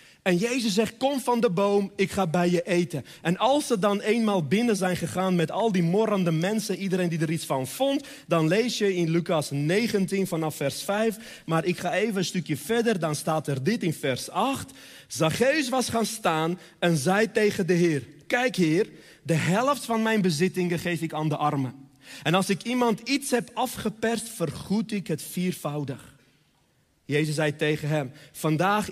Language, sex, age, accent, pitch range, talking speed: Dutch, male, 30-49, Dutch, 155-225 Hz, 190 wpm